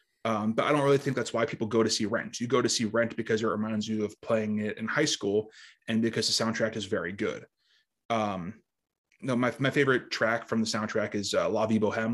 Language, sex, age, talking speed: English, male, 20-39, 240 wpm